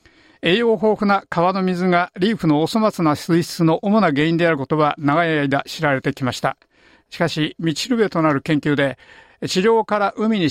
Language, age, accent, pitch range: Japanese, 50-69, native, 140-185 Hz